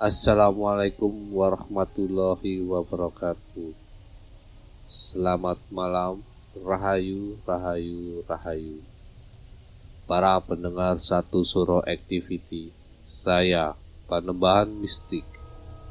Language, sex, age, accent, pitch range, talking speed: Indonesian, male, 20-39, native, 90-100 Hz, 60 wpm